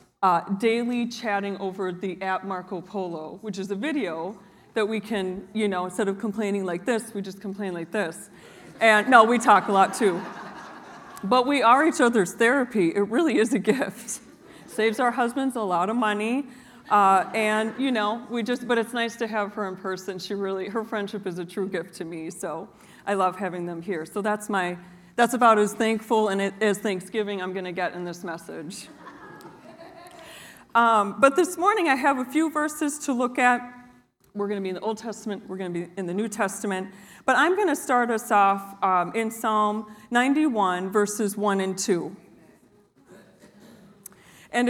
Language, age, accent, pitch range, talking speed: English, 40-59, American, 190-240 Hz, 190 wpm